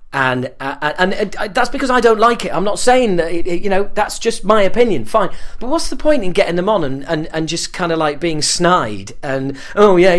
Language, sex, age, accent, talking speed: English, male, 40-59, British, 260 wpm